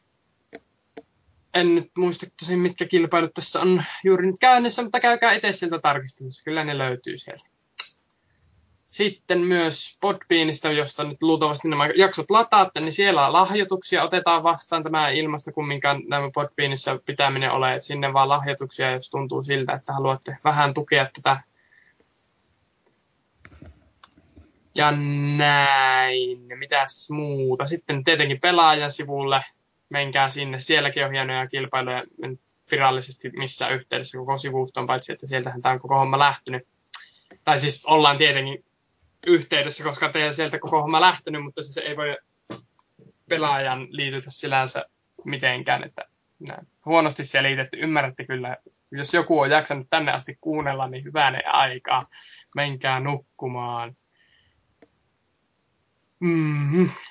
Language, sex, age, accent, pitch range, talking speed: Finnish, male, 20-39, native, 135-165 Hz, 125 wpm